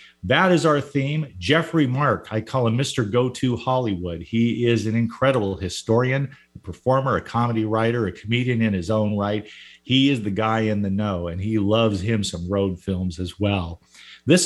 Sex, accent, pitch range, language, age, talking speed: male, American, 105-140 Hz, English, 50-69, 185 wpm